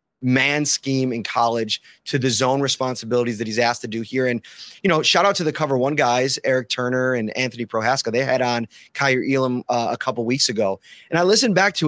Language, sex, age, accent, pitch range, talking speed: English, male, 30-49, American, 130-160 Hz, 220 wpm